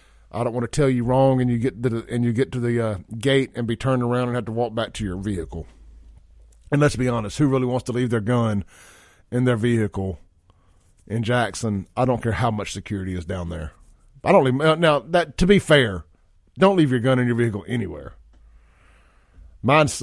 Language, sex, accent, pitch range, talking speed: English, male, American, 95-130 Hz, 220 wpm